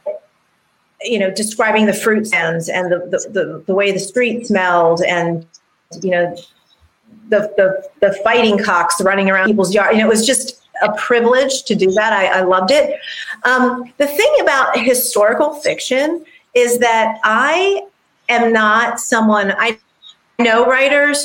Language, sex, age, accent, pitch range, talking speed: English, female, 40-59, American, 195-245 Hz, 160 wpm